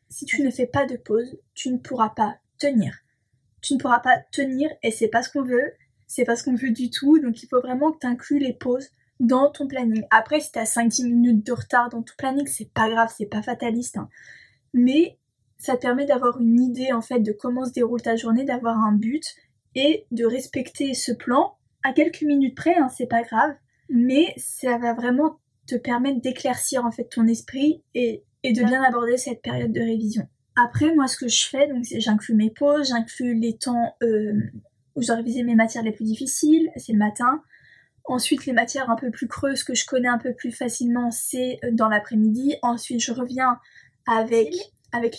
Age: 20-39